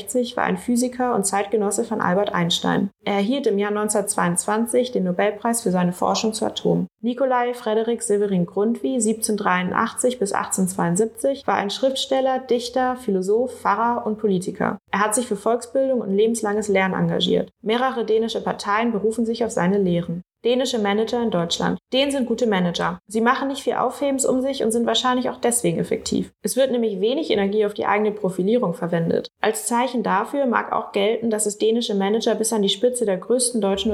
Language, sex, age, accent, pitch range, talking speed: Danish, female, 20-39, German, 200-240 Hz, 175 wpm